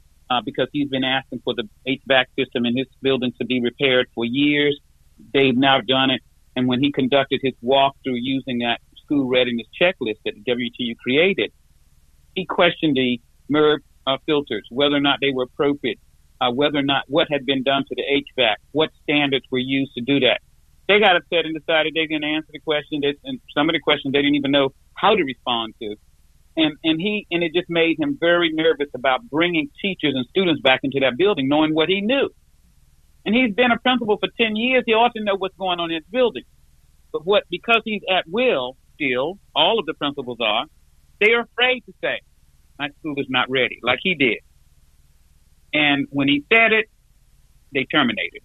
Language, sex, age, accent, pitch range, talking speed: English, male, 50-69, American, 120-165 Hz, 200 wpm